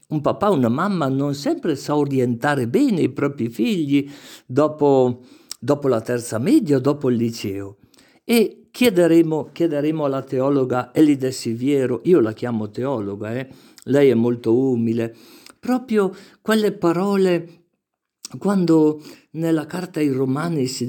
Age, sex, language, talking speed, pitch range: 50-69, male, Italian, 130 wpm, 125-170 Hz